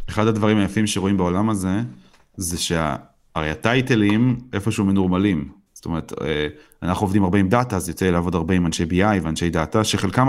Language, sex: Hebrew, male